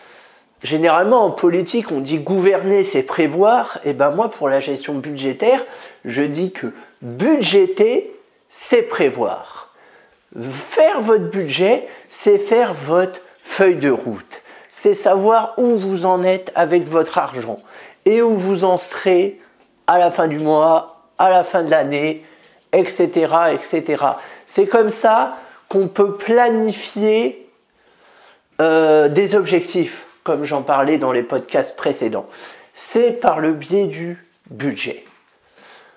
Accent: French